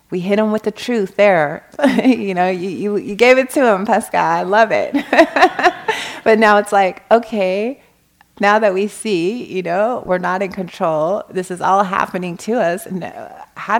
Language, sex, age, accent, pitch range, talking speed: English, female, 30-49, American, 180-225 Hz, 185 wpm